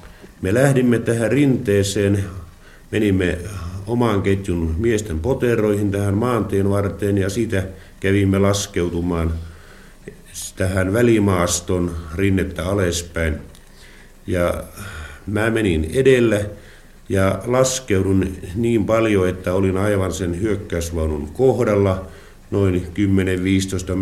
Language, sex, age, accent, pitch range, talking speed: Finnish, male, 50-69, native, 85-110 Hz, 90 wpm